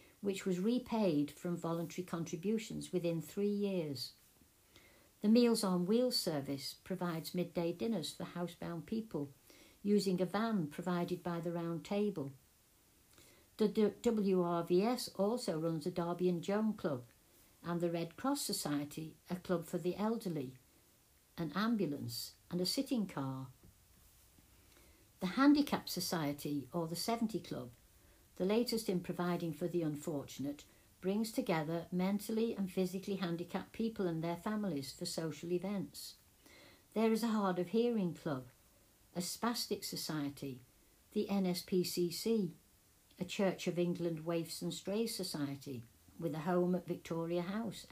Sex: female